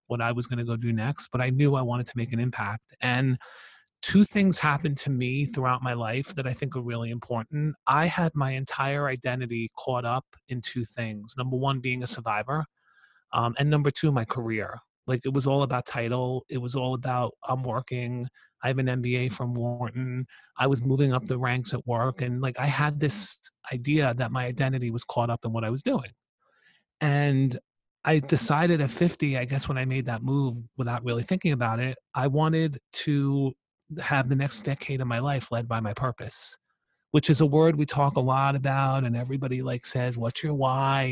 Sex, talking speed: male, 210 wpm